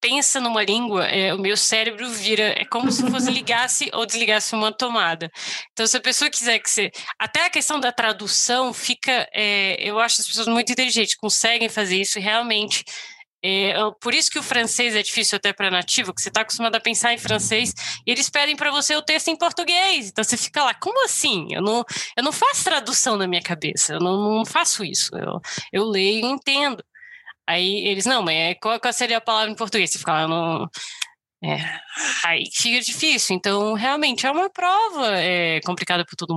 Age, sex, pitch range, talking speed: 20-39, female, 195-255 Hz, 200 wpm